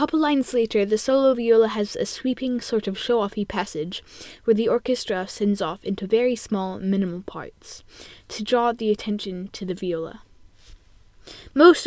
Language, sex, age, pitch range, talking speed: English, female, 10-29, 190-230 Hz, 160 wpm